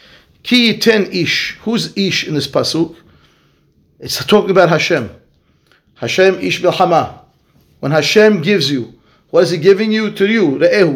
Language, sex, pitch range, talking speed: English, male, 180-235 Hz, 150 wpm